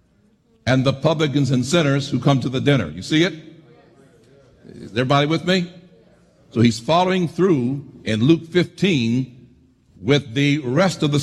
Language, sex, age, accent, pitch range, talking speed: English, male, 60-79, American, 130-165 Hz, 155 wpm